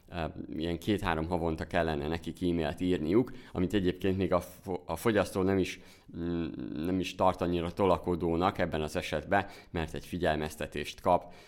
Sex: male